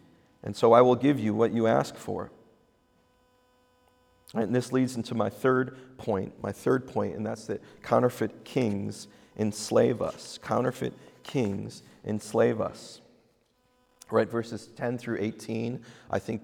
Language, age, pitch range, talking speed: English, 40-59, 105-125 Hz, 140 wpm